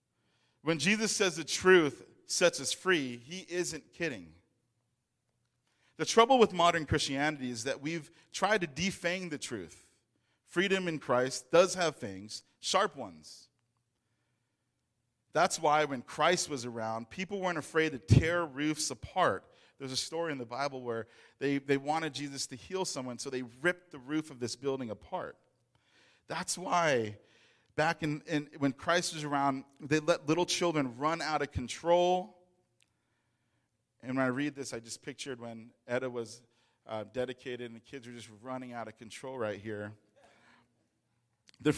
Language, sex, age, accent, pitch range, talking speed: English, male, 40-59, American, 115-155 Hz, 160 wpm